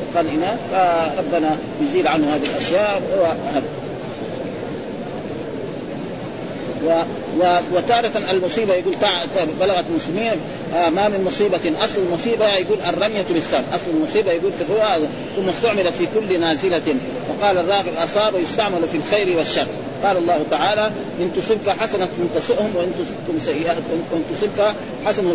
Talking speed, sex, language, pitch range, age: 110 wpm, male, Arabic, 165-210 Hz, 40-59